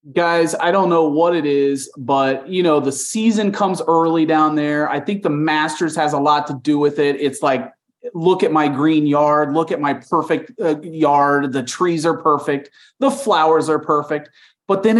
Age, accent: 30-49, American